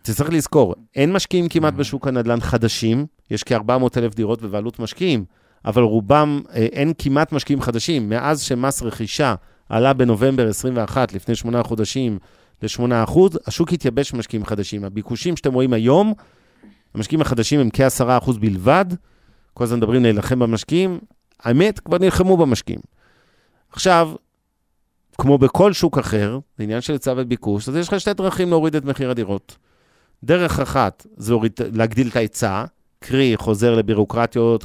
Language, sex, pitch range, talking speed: Hebrew, male, 110-135 Hz, 130 wpm